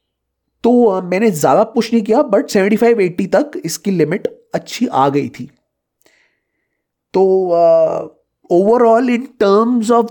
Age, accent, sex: 30-49, native, male